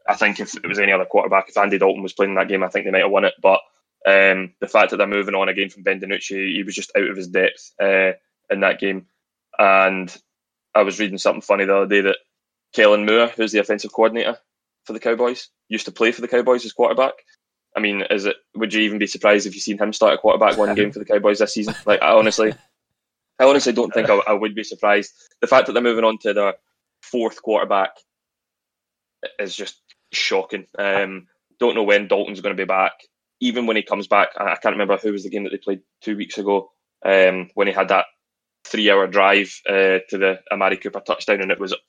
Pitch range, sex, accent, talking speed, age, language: 95-110 Hz, male, British, 235 wpm, 20-39, English